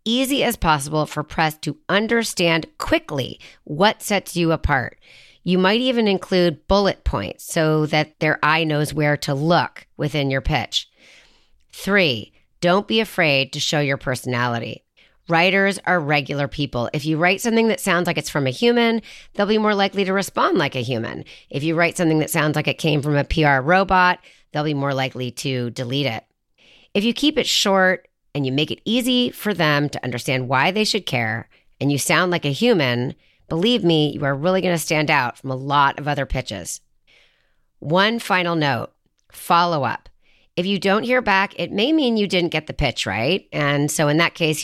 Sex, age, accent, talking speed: female, 30-49, American, 195 wpm